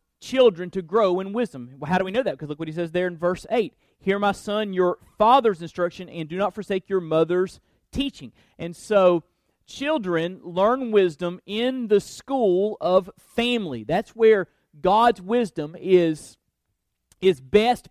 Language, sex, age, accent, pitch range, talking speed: English, male, 40-59, American, 165-215 Hz, 170 wpm